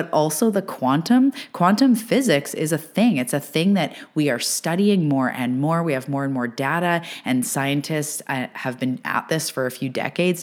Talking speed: 205 wpm